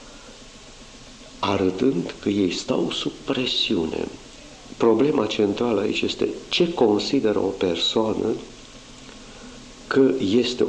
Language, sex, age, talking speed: Romanian, male, 50-69, 90 wpm